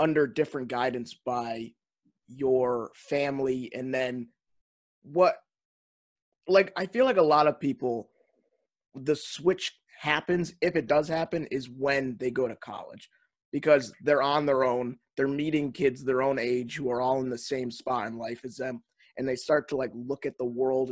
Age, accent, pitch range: 20-39, American, 125-145 Hz